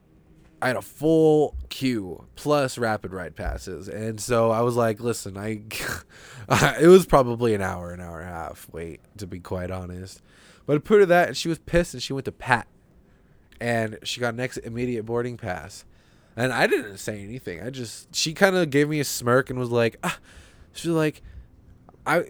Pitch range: 100-145 Hz